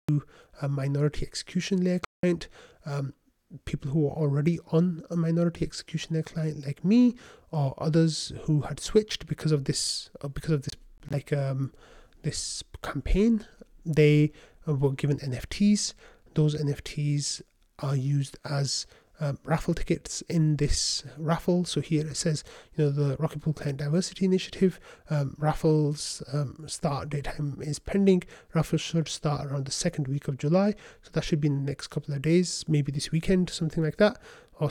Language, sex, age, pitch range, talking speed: English, male, 30-49, 145-165 Hz, 160 wpm